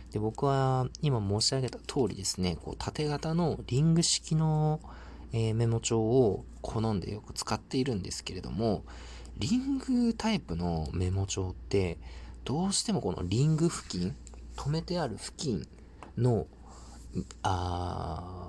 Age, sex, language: 40-59, male, Japanese